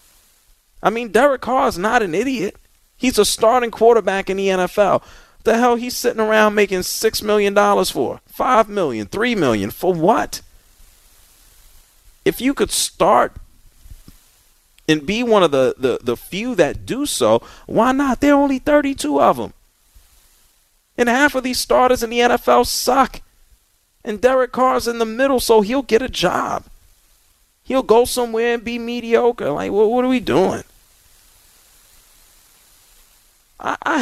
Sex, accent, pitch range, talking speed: male, American, 160-250 Hz, 150 wpm